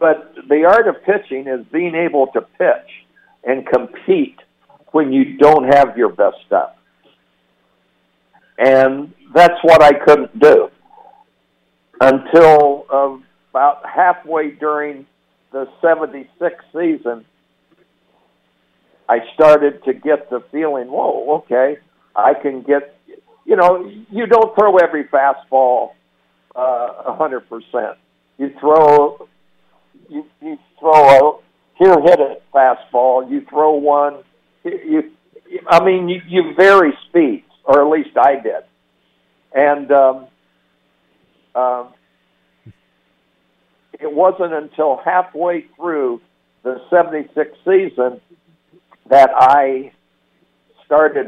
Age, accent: 60-79, American